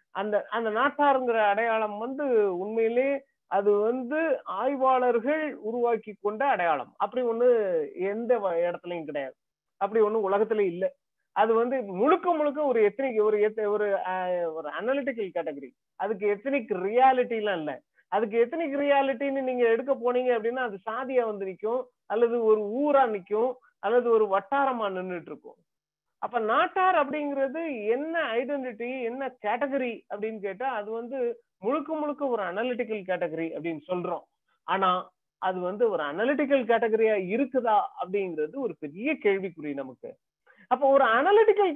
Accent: native